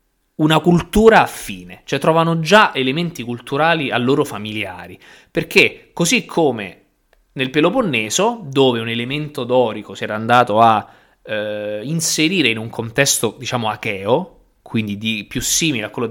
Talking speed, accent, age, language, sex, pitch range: 135 wpm, native, 20-39, Italian, male, 105-155 Hz